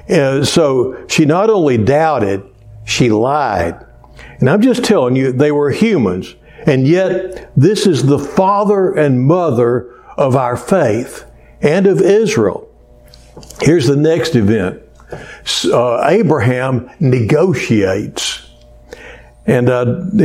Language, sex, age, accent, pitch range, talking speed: English, male, 60-79, American, 125-165 Hz, 115 wpm